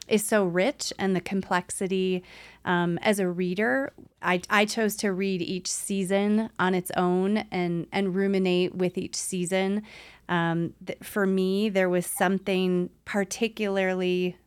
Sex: female